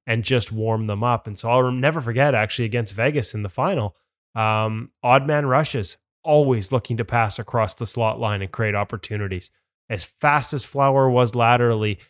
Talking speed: 185 wpm